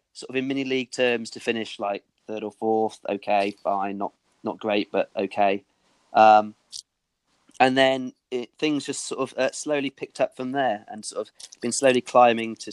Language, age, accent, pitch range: English, 30-49, British, 100-115 Hz